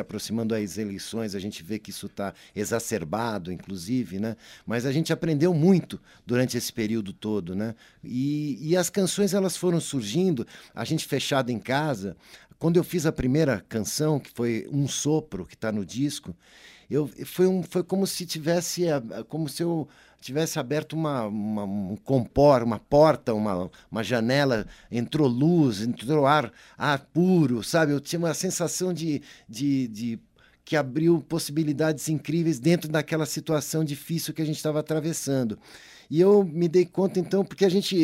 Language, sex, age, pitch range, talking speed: Portuguese, male, 60-79, 125-170 Hz, 165 wpm